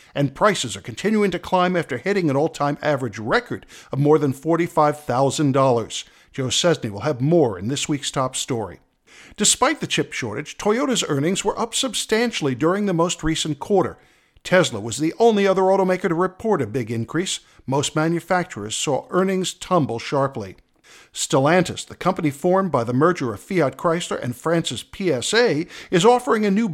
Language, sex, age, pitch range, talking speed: English, male, 50-69, 140-190 Hz, 165 wpm